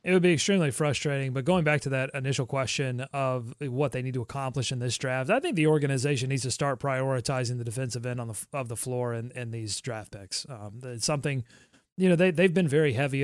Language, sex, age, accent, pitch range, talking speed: English, male, 30-49, American, 130-155 Hz, 240 wpm